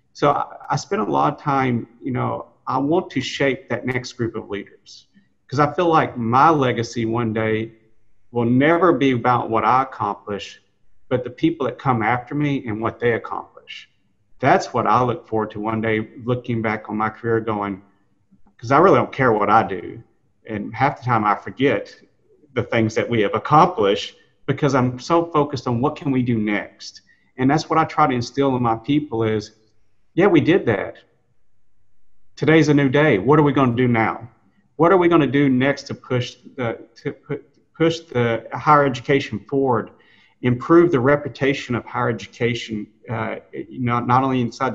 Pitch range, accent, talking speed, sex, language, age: 115-145 Hz, American, 190 wpm, male, English, 50-69